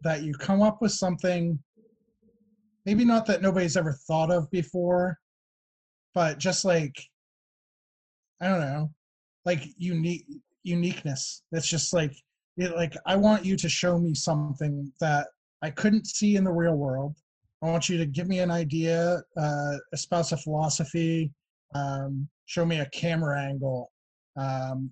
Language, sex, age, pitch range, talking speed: English, male, 30-49, 145-175 Hz, 150 wpm